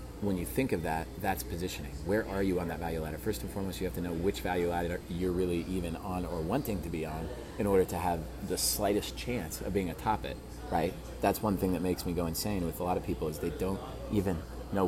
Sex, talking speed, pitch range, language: male, 255 wpm, 85-95 Hz, English